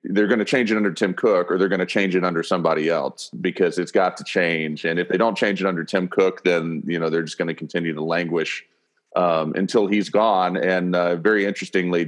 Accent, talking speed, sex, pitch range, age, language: American, 245 wpm, male, 85-100 Hz, 30-49, English